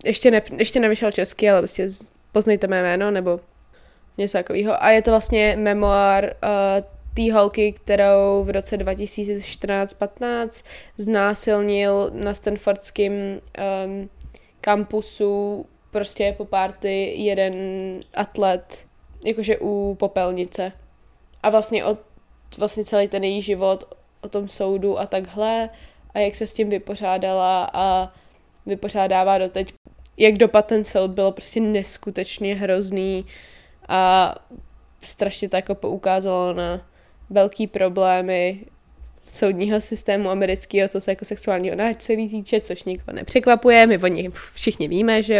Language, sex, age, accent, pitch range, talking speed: Czech, female, 20-39, native, 190-215 Hz, 125 wpm